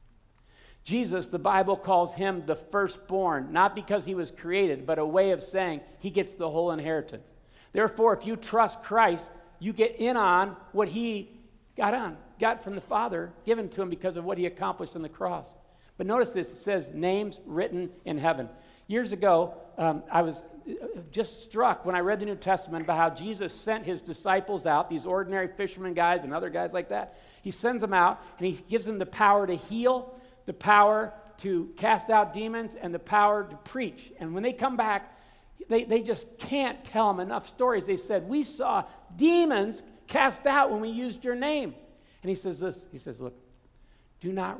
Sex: male